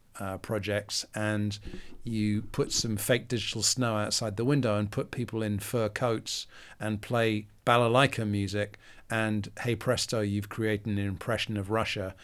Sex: male